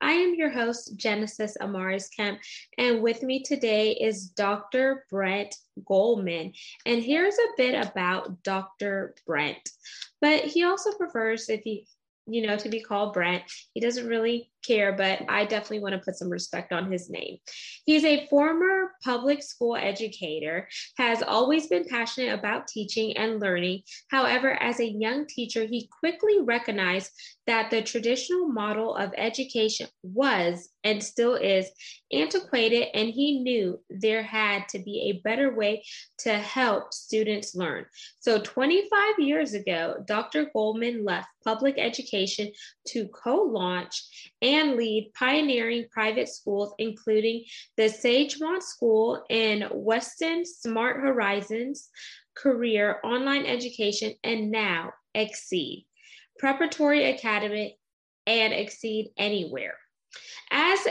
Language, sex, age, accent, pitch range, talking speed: English, female, 10-29, American, 210-265 Hz, 130 wpm